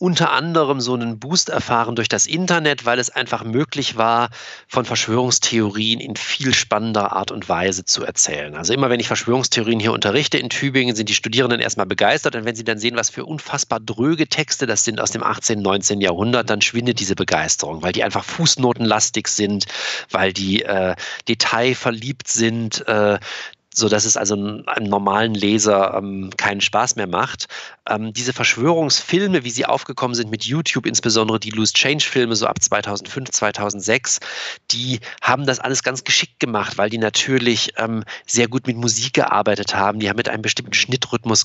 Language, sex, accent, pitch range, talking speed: German, male, German, 105-130 Hz, 175 wpm